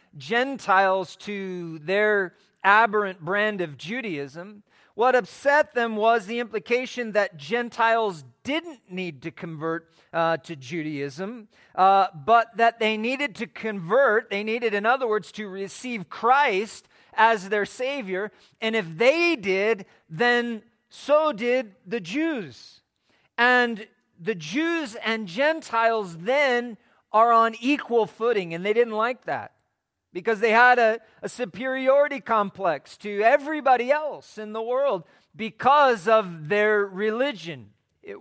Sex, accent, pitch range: male, American, 200-250 Hz